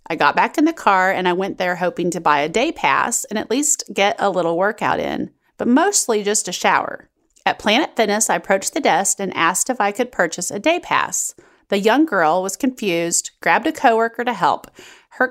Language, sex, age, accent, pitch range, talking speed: English, female, 30-49, American, 175-250 Hz, 220 wpm